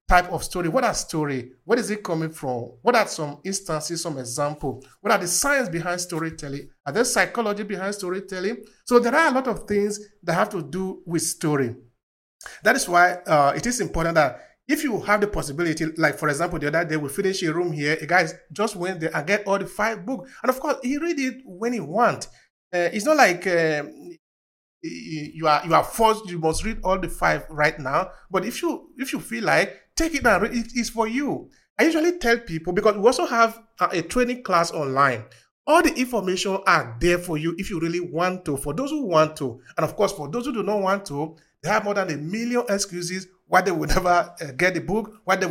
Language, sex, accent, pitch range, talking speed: English, male, Nigerian, 160-215 Hz, 230 wpm